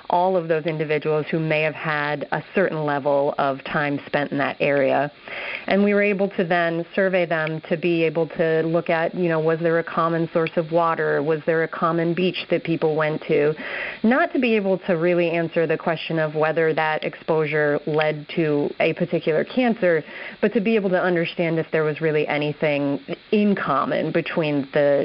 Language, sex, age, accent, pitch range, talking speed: English, female, 30-49, American, 155-195 Hz, 195 wpm